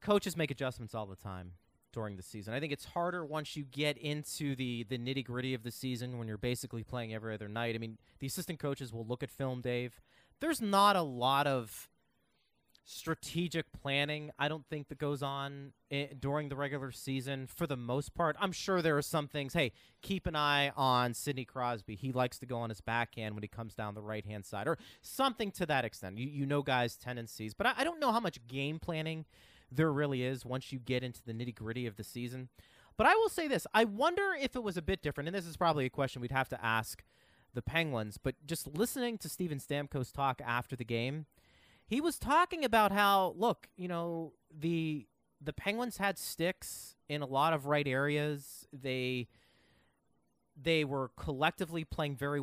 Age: 30-49